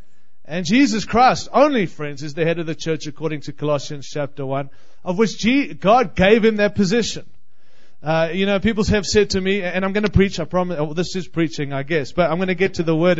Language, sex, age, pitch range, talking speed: English, male, 30-49, 155-210 Hz, 235 wpm